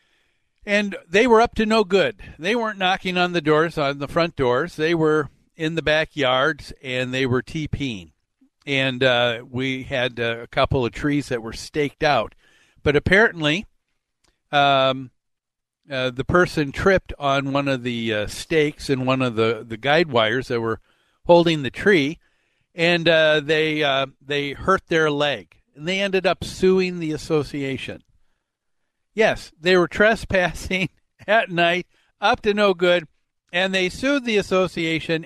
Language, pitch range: English, 130-175 Hz